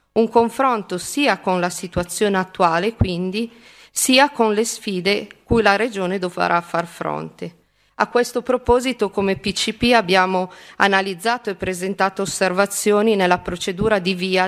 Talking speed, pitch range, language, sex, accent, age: 135 wpm, 185-225 Hz, Italian, female, native, 40-59